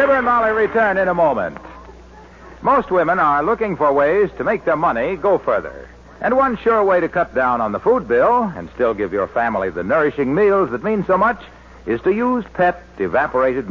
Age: 60-79